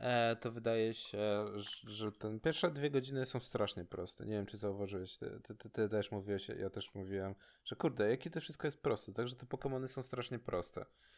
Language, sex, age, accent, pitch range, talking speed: Polish, male, 20-39, native, 105-130 Hz, 200 wpm